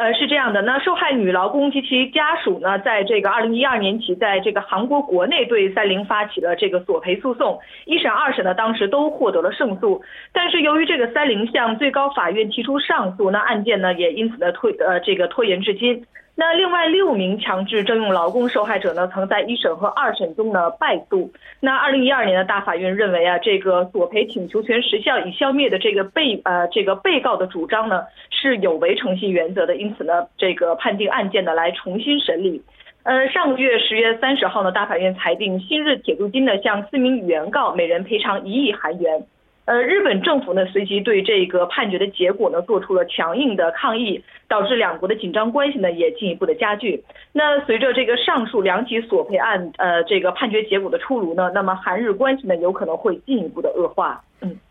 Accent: Chinese